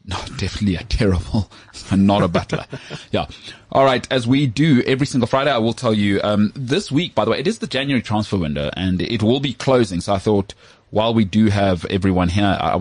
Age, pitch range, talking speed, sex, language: 30-49, 95-115 Hz, 220 wpm, male, English